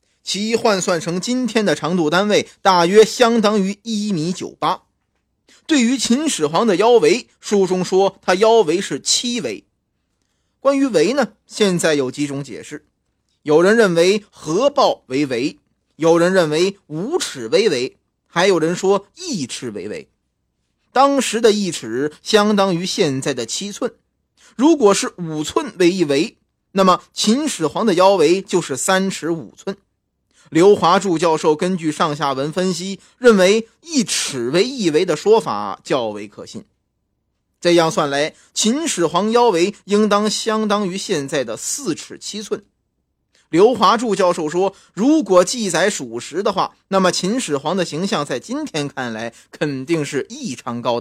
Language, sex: Chinese, male